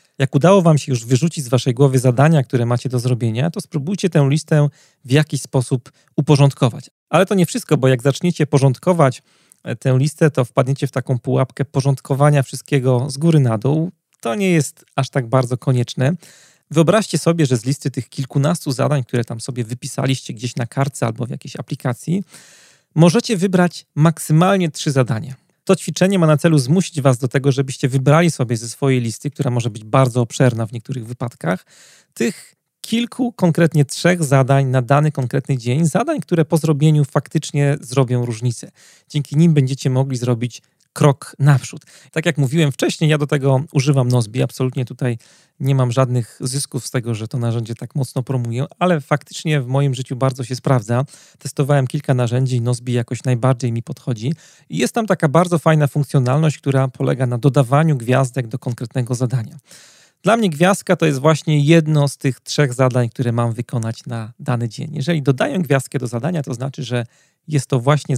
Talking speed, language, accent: 180 wpm, Polish, native